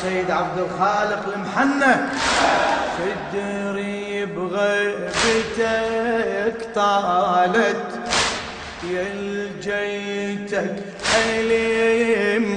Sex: male